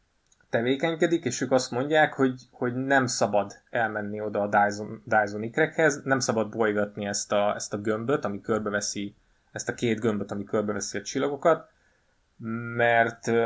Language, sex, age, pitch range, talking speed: Hungarian, male, 20-39, 105-125 Hz, 145 wpm